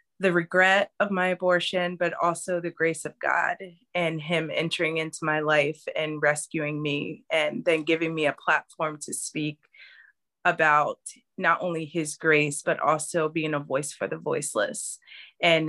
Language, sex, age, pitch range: English, female, 20-39, 150-170 Hz